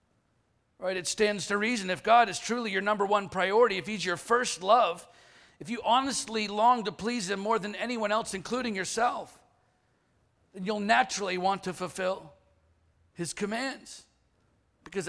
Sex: male